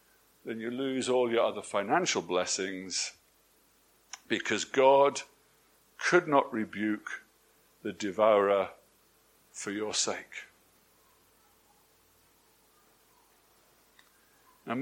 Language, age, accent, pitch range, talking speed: English, 60-79, British, 140-200 Hz, 75 wpm